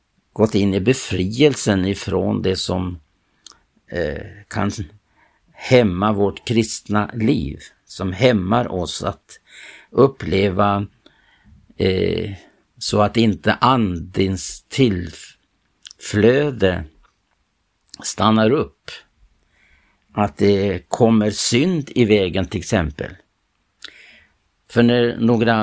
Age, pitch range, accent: 60-79, 95-115 Hz, Norwegian